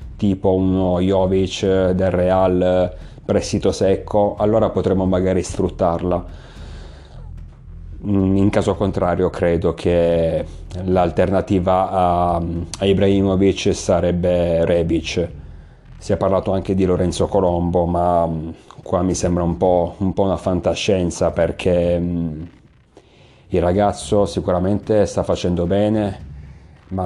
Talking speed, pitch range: 100 wpm, 85-95 Hz